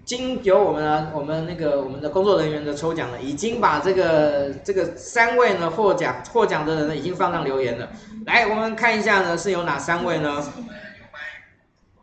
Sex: male